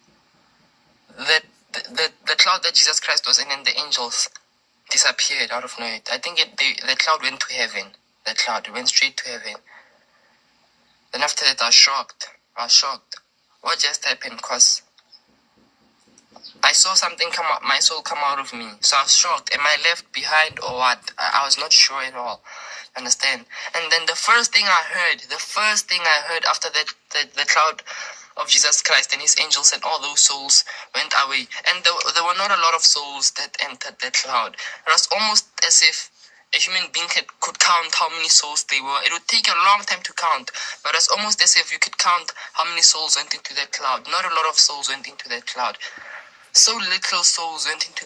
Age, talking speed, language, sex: 20-39, 210 wpm, French, male